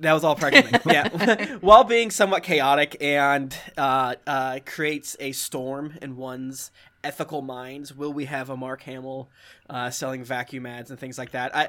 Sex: male